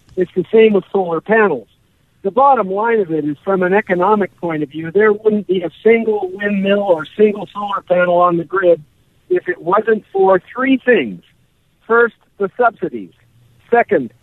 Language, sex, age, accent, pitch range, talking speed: English, male, 60-79, American, 175-215 Hz, 175 wpm